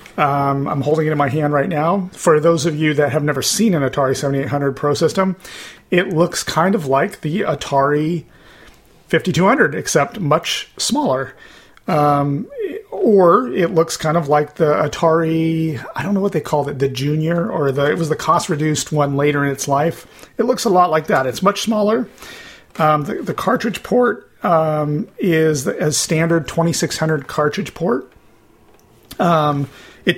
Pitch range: 145-170 Hz